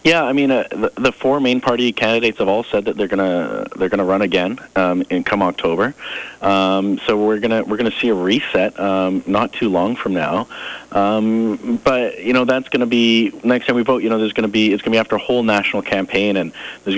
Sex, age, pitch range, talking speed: male, 30-49, 95-110 Hz, 255 wpm